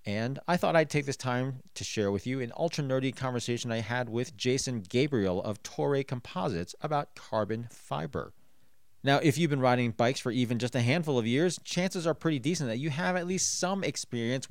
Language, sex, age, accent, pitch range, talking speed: English, male, 30-49, American, 115-160 Hz, 205 wpm